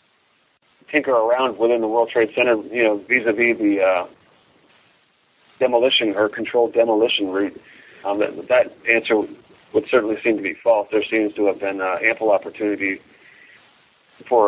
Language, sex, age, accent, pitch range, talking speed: English, male, 40-59, American, 105-130 Hz, 155 wpm